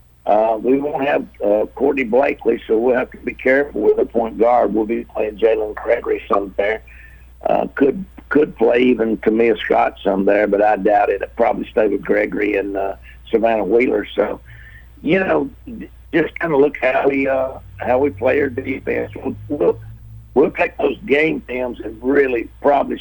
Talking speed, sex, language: 185 wpm, male, English